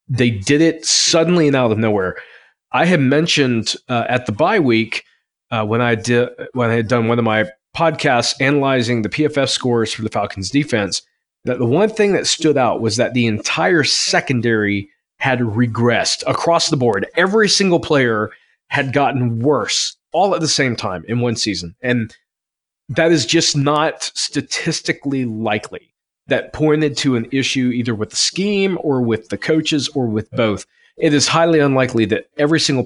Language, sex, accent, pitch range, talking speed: English, male, American, 110-145 Hz, 175 wpm